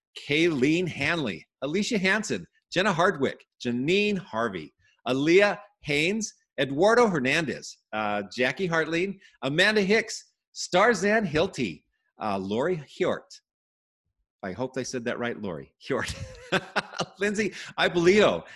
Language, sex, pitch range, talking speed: English, male, 130-205 Hz, 105 wpm